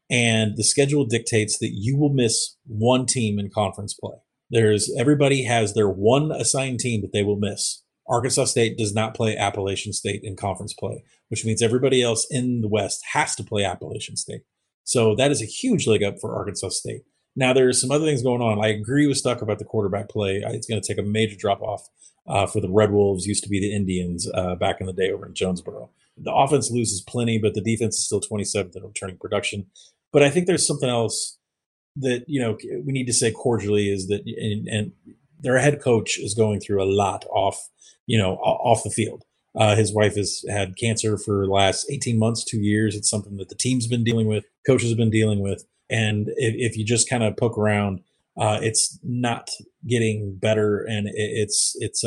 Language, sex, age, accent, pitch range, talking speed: English, male, 30-49, American, 100-120 Hz, 215 wpm